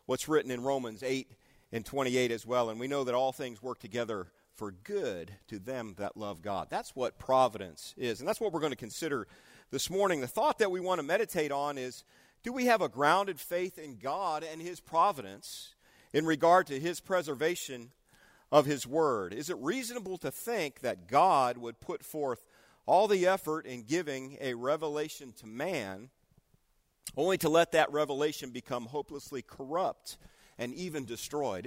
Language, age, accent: English, 40-59, American